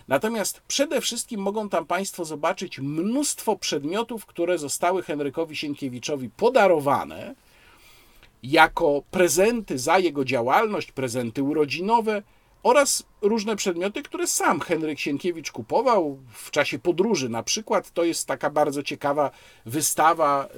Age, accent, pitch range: 50-69, native, 130-190 Hz